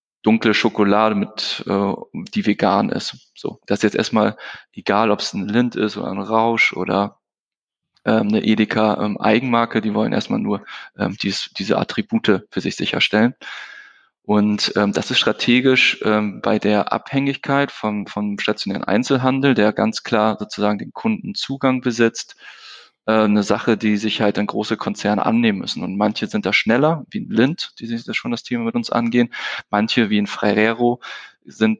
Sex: male